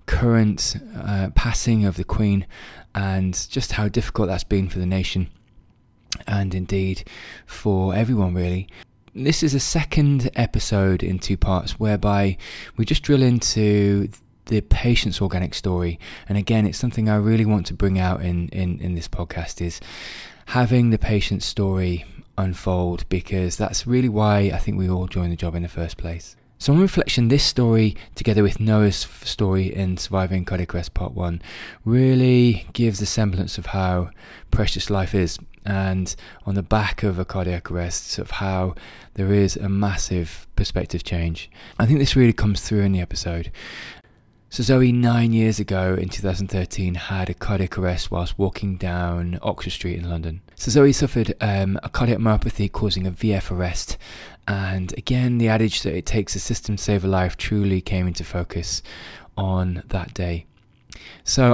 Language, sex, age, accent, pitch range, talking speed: English, male, 20-39, British, 90-110 Hz, 170 wpm